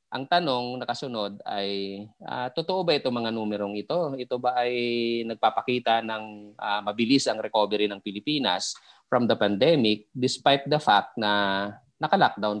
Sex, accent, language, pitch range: male, Filipino, English, 105-130 Hz